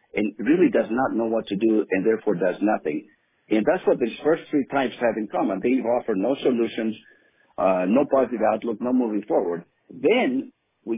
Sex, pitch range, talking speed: male, 115-145 Hz, 190 wpm